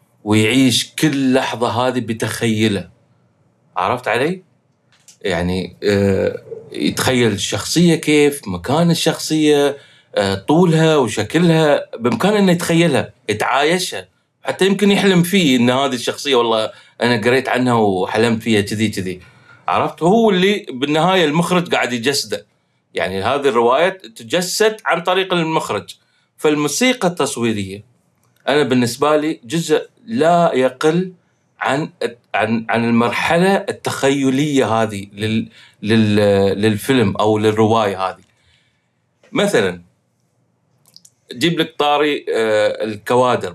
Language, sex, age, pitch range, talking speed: English, male, 30-49, 115-165 Hz, 65 wpm